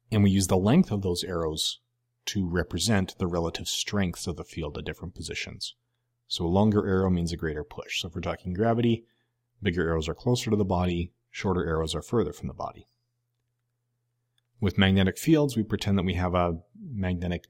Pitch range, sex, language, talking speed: 90-120 Hz, male, English, 190 wpm